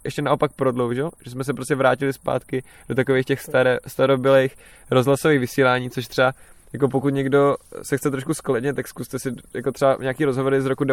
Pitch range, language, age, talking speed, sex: 125-140 Hz, Czech, 20-39, 180 wpm, male